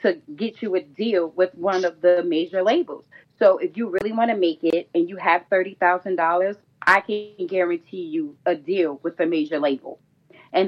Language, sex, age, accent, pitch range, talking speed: English, female, 30-49, American, 165-225 Hz, 190 wpm